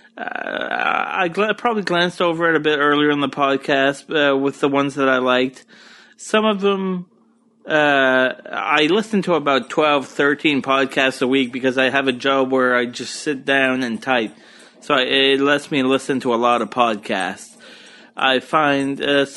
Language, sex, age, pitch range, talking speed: English, male, 30-49, 135-190 Hz, 175 wpm